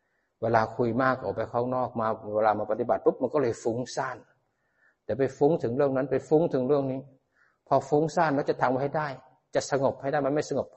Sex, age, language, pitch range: male, 60-79, Thai, 120-150 Hz